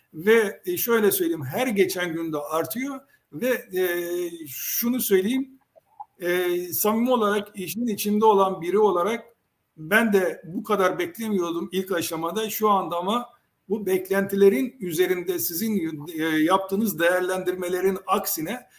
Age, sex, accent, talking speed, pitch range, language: 60-79, male, native, 110 wpm, 175-220 Hz, Turkish